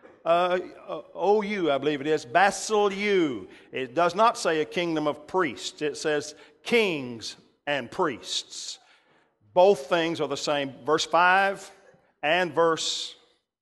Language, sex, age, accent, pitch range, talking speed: English, male, 50-69, American, 165-230 Hz, 130 wpm